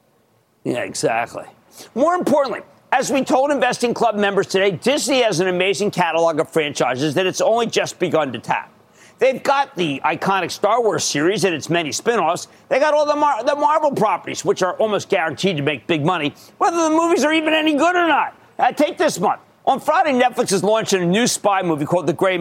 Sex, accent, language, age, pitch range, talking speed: male, American, English, 50-69, 190-300 Hz, 205 wpm